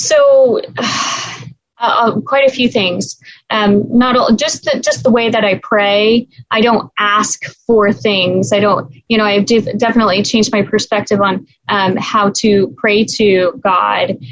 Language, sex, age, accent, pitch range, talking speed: English, female, 20-39, American, 200-240 Hz, 170 wpm